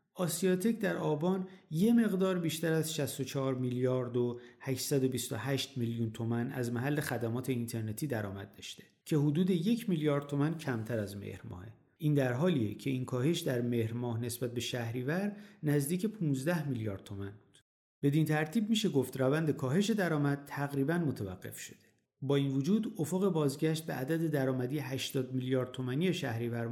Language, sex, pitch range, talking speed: Persian, male, 120-160 Hz, 150 wpm